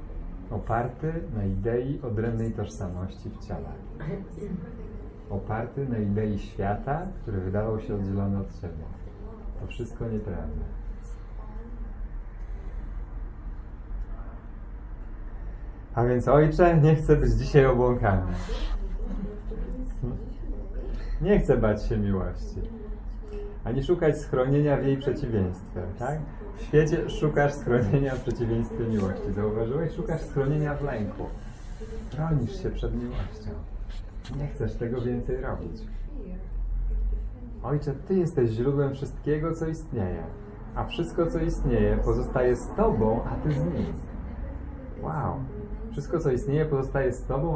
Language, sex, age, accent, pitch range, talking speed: English, male, 40-59, Polish, 105-135 Hz, 110 wpm